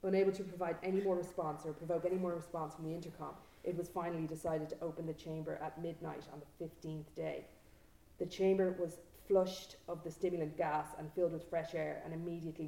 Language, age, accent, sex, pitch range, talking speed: English, 30-49, Irish, female, 160-180 Hz, 205 wpm